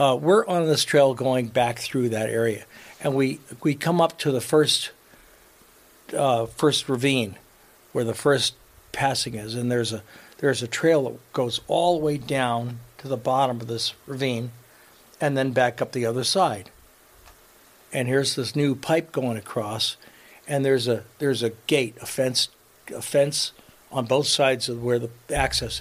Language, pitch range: English, 115-140 Hz